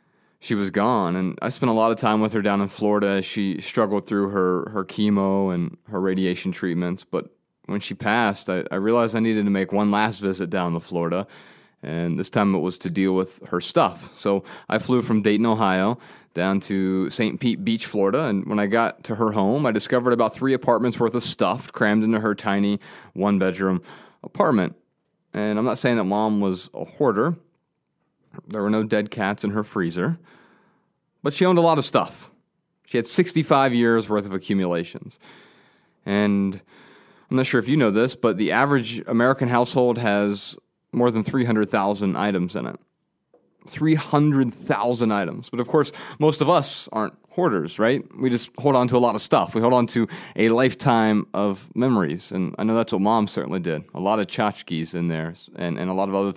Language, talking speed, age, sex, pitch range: English, 195 wpm, 30-49, male, 95-120 Hz